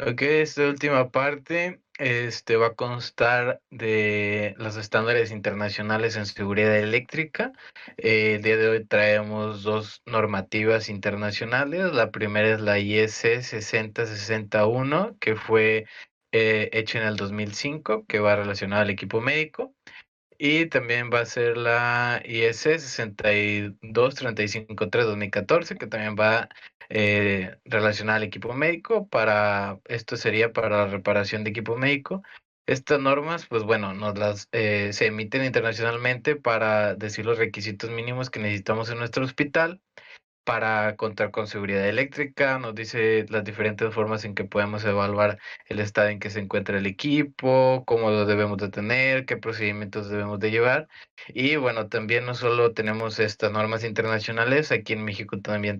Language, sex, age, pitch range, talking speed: Spanish, male, 20-39, 105-120 Hz, 140 wpm